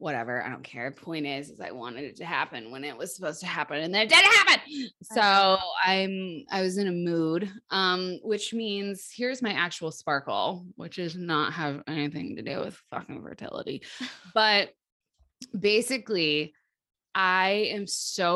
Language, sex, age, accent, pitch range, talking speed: English, female, 20-39, American, 170-225 Hz, 170 wpm